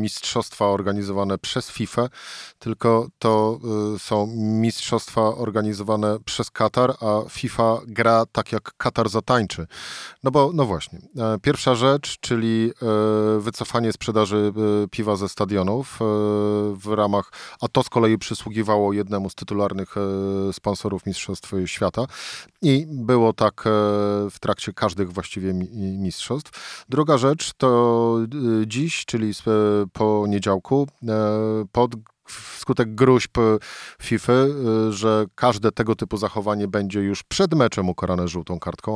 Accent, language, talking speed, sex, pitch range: native, Polish, 110 wpm, male, 100-115 Hz